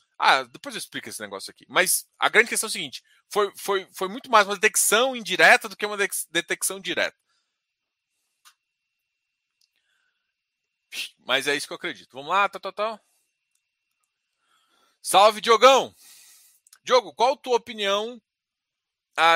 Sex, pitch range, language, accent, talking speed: male, 185-255 Hz, Portuguese, Brazilian, 145 wpm